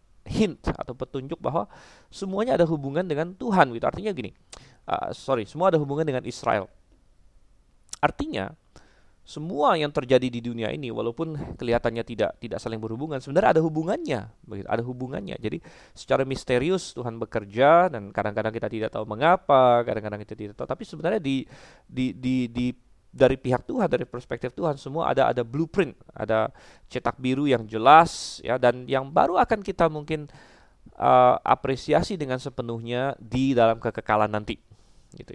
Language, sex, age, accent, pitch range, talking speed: Indonesian, male, 20-39, native, 115-155 Hz, 155 wpm